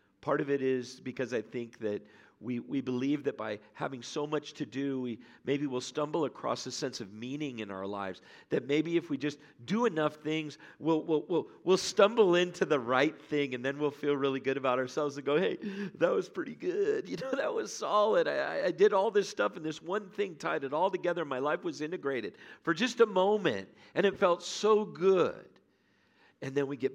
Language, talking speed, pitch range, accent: English, 220 wpm, 95-150 Hz, American